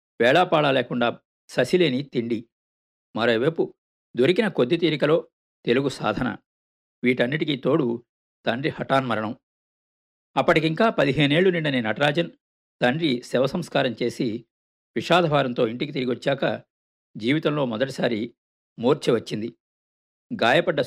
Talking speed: 85 wpm